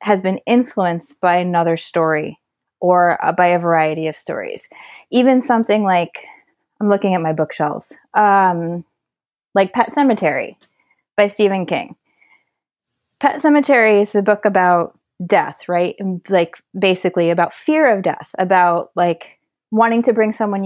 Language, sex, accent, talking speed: English, female, American, 140 wpm